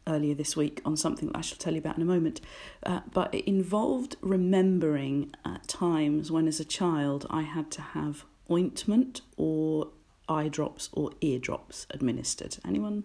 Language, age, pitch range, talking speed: English, 40-59, 155-215 Hz, 170 wpm